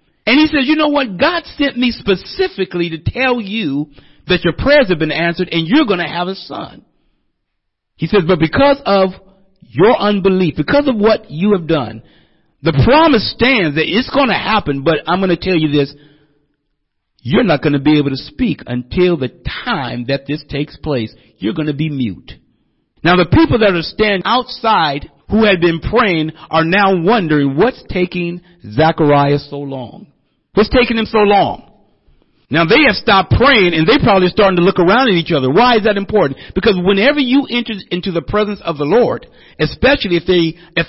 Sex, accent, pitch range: male, American, 145-205 Hz